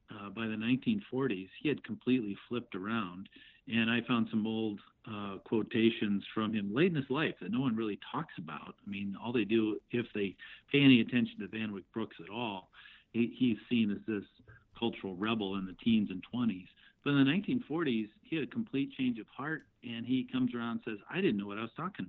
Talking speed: 215 wpm